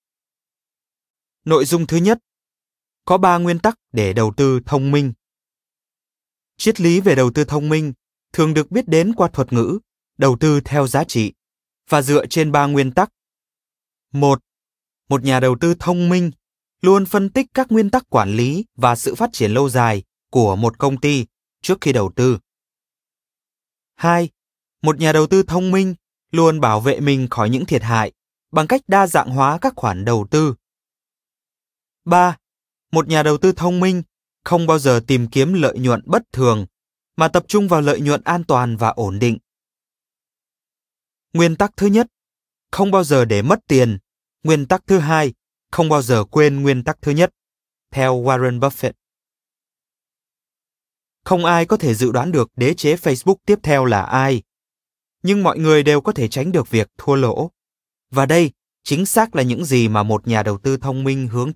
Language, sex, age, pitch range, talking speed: Vietnamese, male, 20-39, 125-175 Hz, 180 wpm